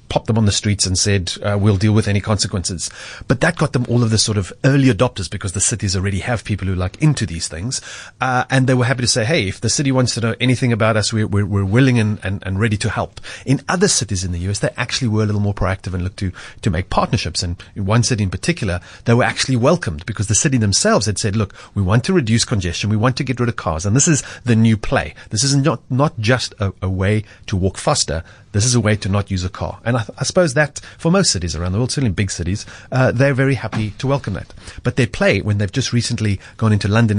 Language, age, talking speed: English, 30-49, 270 wpm